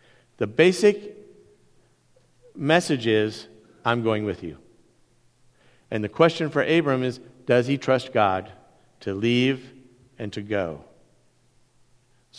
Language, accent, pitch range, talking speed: English, American, 110-150 Hz, 115 wpm